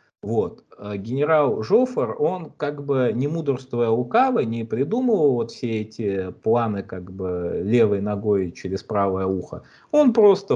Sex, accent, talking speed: male, native, 135 wpm